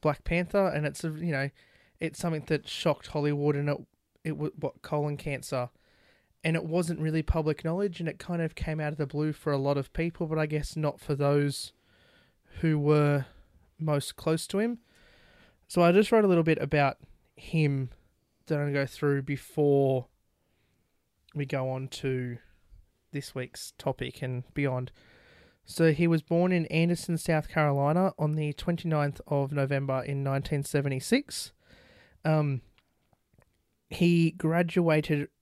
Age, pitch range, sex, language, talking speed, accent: 20-39, 140-165 Hz, male, English, 160 wpm, Australian